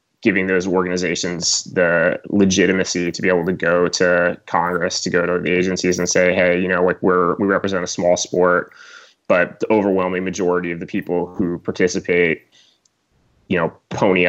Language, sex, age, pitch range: English, male, 20-39, 85-95 Hz